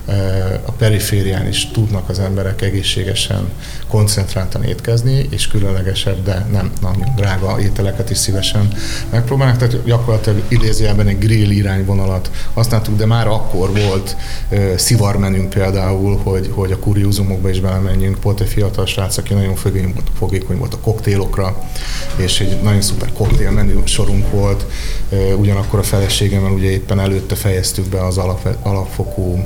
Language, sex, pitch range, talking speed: Hungarian, male, 95-110 Hz, 140 wpm